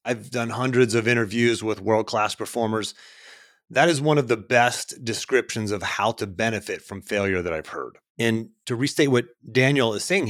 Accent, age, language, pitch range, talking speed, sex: American, 30-49, English, 110-150 Hz, 180 wpm, male